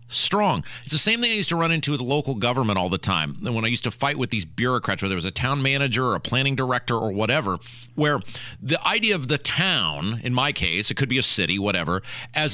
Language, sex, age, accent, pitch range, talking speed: English, male, 40-59, American, 120-165 Hz, 255 wpm